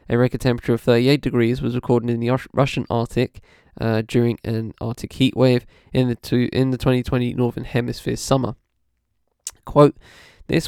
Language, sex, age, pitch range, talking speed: English, male, 20-39, 120-140 Hz, 170 wpm